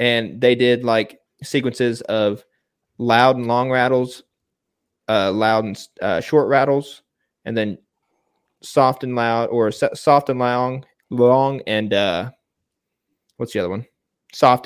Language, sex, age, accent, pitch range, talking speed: English, male, 20-39, American, 110-130 Hz, 140 wpm